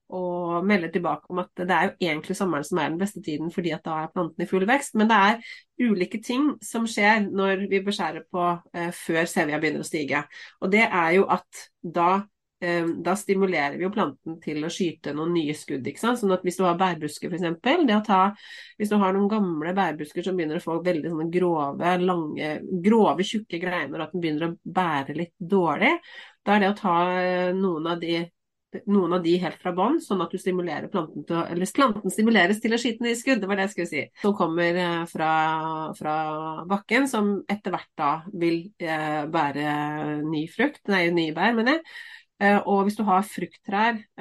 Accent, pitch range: Swedish, 165-200 Hz